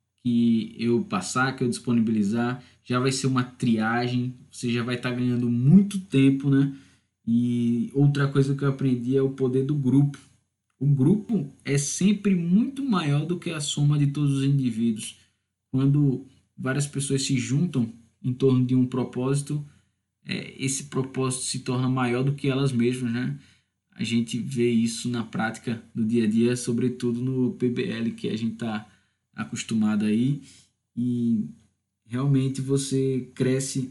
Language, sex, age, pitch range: Portuguese, male, 20-39, 115-135 Hz